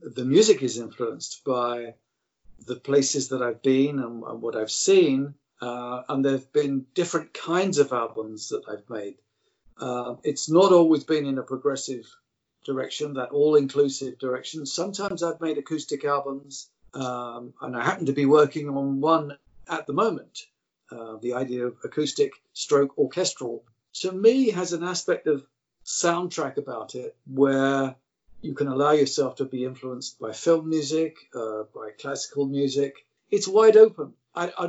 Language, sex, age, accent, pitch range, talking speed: English, male, 50-69, British, 130-165 Hz, 160 wpm